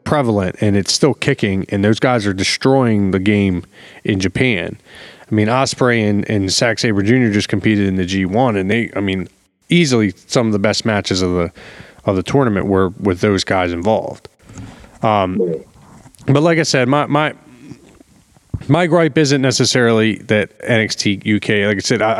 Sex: male